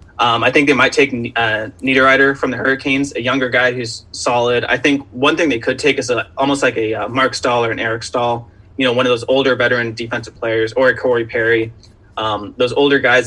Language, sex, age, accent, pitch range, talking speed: English, male, 20-39, American, 115-125 Hz, 230 wpm